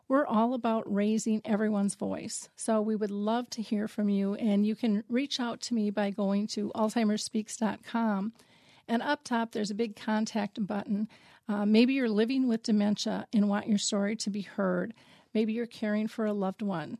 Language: English